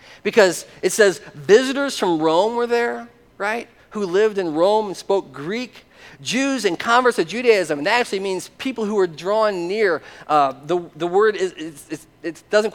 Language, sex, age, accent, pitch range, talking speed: English, male, 40-59, American, 150-225 Hz, 185 wpm